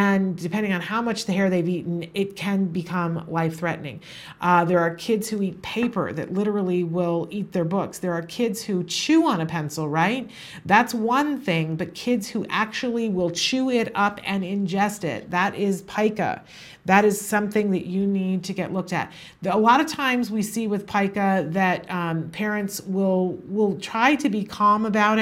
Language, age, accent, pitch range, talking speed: English, 50-69, American, 170-205 Hz, 190 wpm